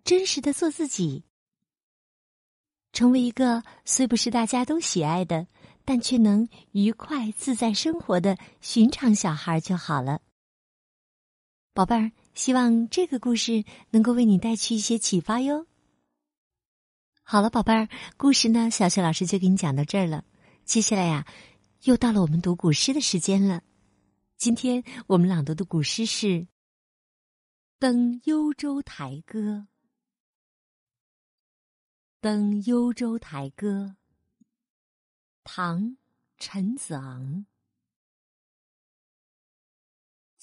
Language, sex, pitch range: Chinese, female, 165-235 Hz